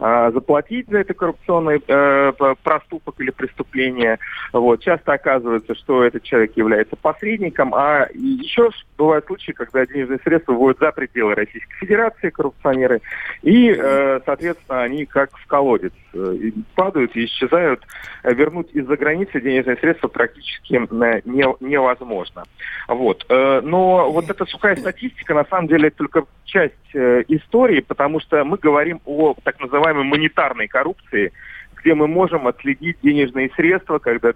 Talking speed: 135 wpm